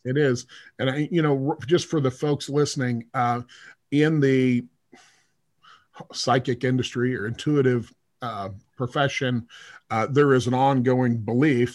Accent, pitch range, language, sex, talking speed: American, 120-140 Hz, English, male, 135 wpm